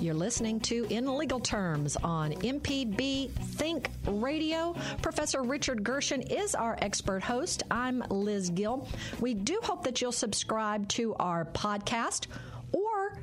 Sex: female